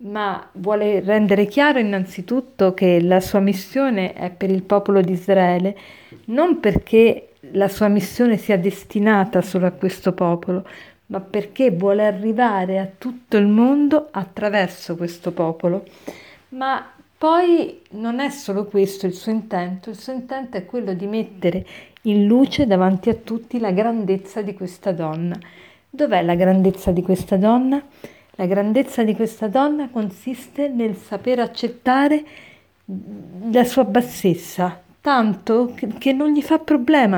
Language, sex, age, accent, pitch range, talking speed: Italian, female, 50-69, native, 190-245 Hz, 140 wpm